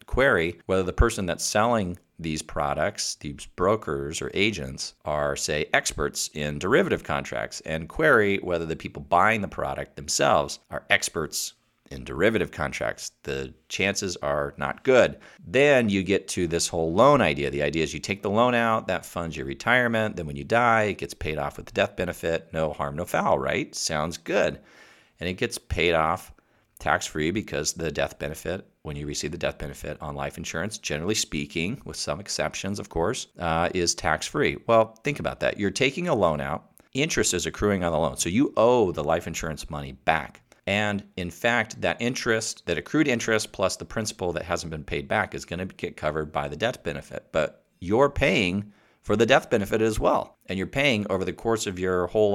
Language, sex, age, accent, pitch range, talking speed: English, male, 40-59, American, 75-105 Hz, 195 wpm